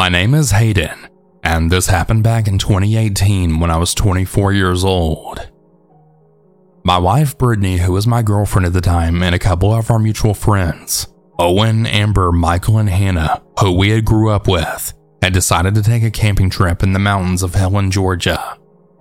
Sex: male